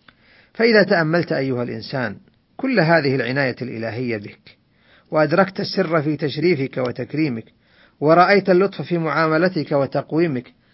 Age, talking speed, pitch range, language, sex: 50-69, 105 wpm, 125-170 Hz, Arabic, male